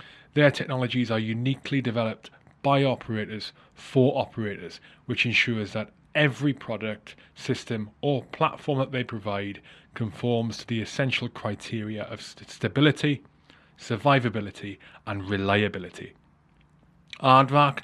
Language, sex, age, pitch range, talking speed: English, male, 20-39, 110-140 Hz, 105 wpm